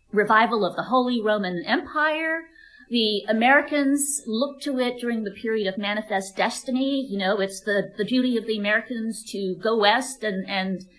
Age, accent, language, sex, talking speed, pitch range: 50-69, American, English, female, 170 wpm, 195-265 Hz